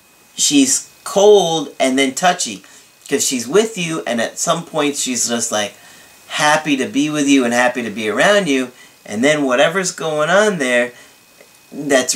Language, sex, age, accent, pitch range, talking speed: English, male, 40-59, American, 120-155 Hz, 170 wpm